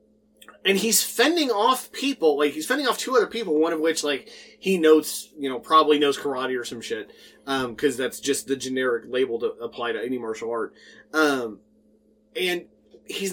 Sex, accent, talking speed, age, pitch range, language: male, American, 190 wpm, 30-49, 130-175 Hz, English